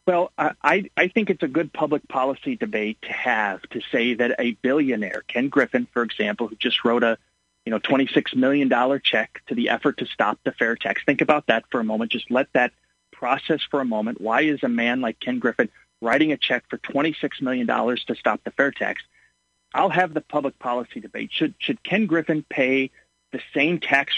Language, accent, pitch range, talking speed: English, American, 120-160 Hz, 205 wpm